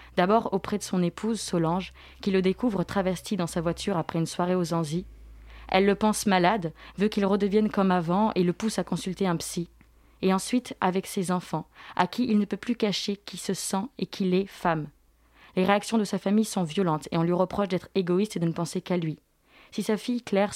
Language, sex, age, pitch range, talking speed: French, female, 20-39, 170-205 Hz, 220 wpm